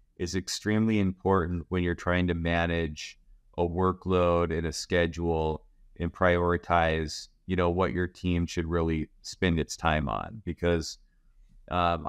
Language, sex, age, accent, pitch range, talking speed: English, male, 30-49, American, 85-100 Hz, 140 wpm